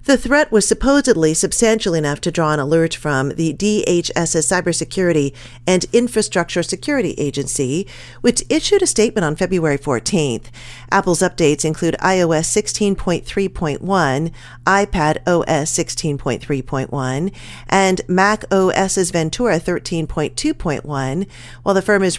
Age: 40-59